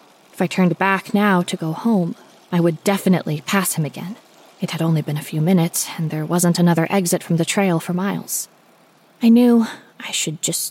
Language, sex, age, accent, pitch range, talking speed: English, female, 20-39, American, 165-200 Hz, 200 wpm